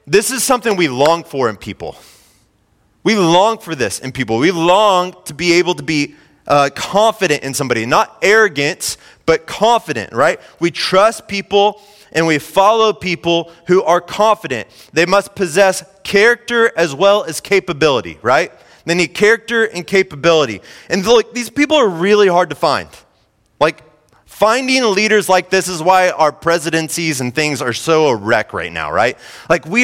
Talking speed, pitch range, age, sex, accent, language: 165 wpm, 140-190 Hz, 30-49, male, American, English